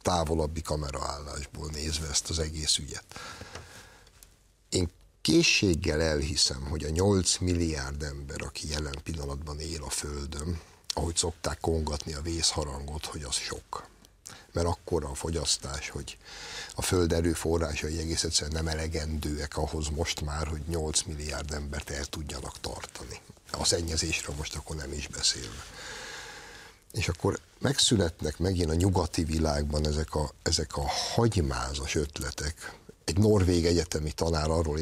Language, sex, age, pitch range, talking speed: Hungarian, male, 60-79, 75-85 Hz, 135 wpm